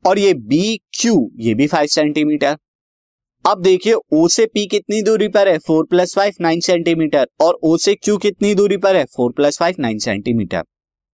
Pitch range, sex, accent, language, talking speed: 140-190 Hz, male, native, Hindi, 185 wpm